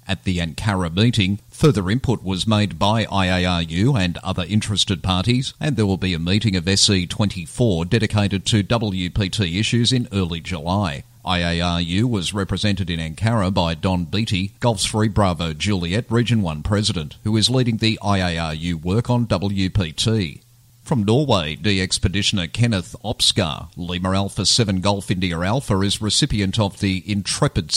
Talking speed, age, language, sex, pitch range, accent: 150 wpm, 40-59, English, male, 95-115 Hz, Australian